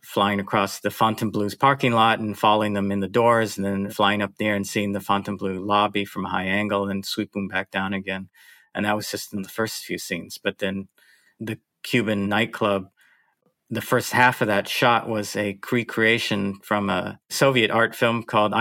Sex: male